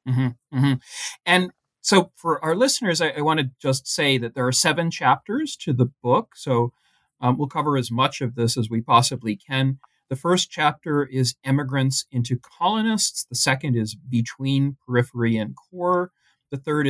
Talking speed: 180 wpm